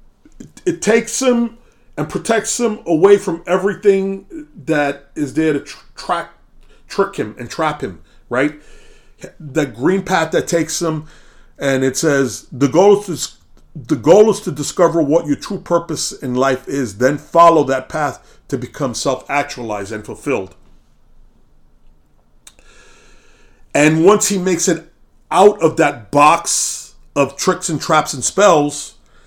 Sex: male